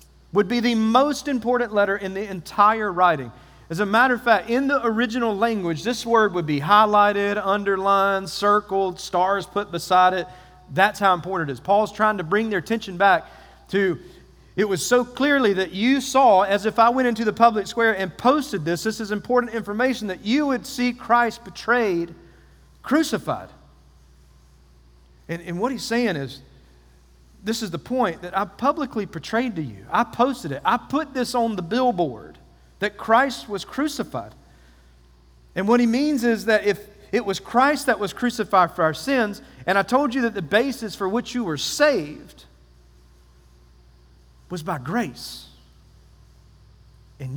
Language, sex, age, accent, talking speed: English, male, 40-59, American, 170 wpm